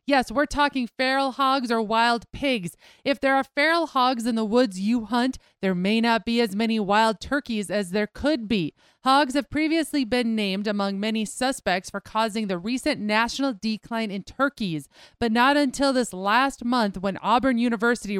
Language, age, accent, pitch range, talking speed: English, 30-49, American, 200-255 Hz, 180 wpm